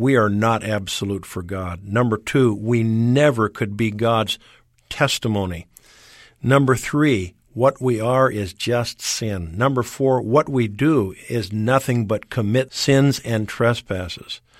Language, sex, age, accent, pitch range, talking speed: English, male, 50-69, American, 105-130 Hz, 140 wpm